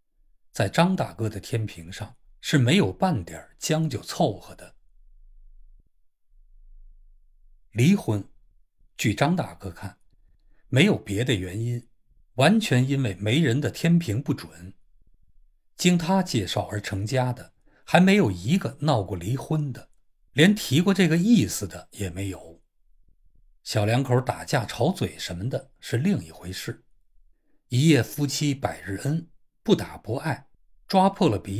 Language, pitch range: Chinese, 90-145 Hz